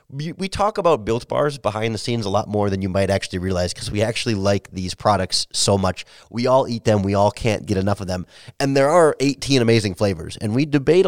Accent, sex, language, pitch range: American, male, English, 100-125 Hz